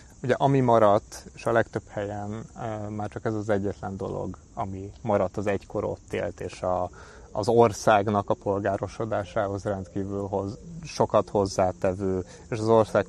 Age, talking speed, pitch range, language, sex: 30-49, 140 wpm, 95-115 Hz, Hungarian, male